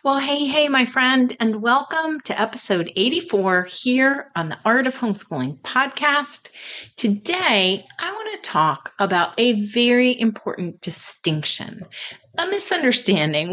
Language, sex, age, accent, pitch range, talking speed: English, female, 30-49, American, 170-265 Hz, 130 wpm